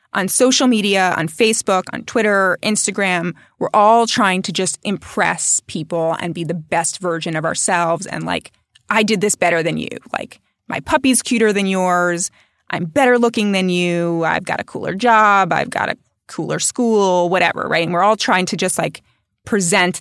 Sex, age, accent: female, 20-39, American